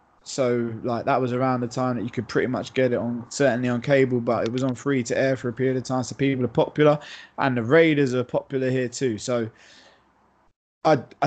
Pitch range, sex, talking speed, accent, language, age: 125-160 Hz, male, 230 wpm, British, English, 20-39